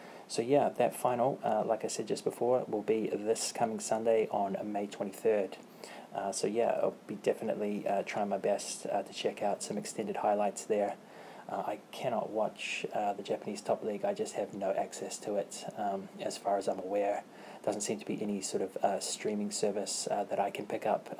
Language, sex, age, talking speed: English, male, 20-39, 210 wpm